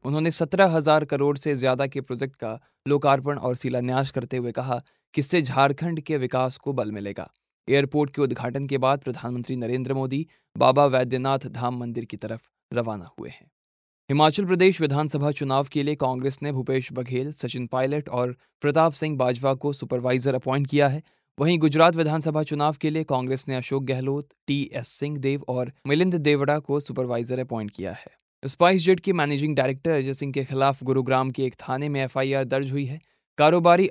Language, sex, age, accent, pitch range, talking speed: Hindi, male, 20-39, native, 130-150 Hz, 155 wpm